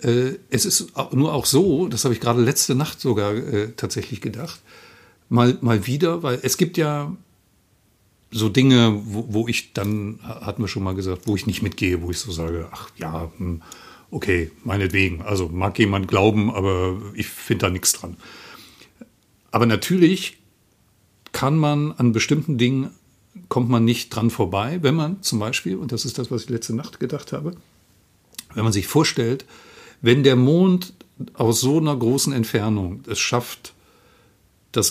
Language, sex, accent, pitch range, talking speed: German, male, German, 100-125 Hz, 165 wpm